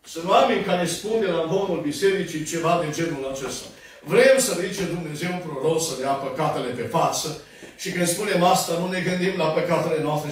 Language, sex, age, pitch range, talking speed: Romanian, male, 60-79, 160-265 Hz, 185 wpm